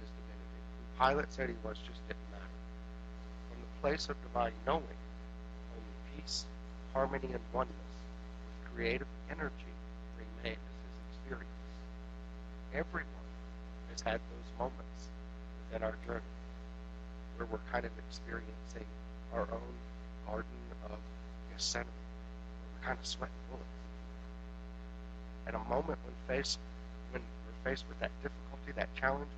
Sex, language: male, English